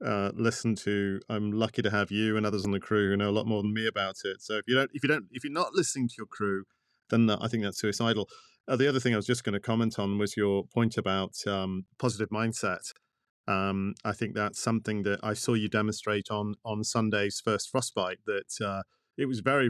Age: 40-59